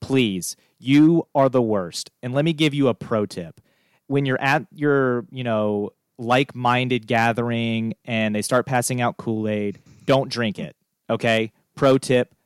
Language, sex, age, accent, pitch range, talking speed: English, male, 30-49, American, 110-135 Hz, 160 wpm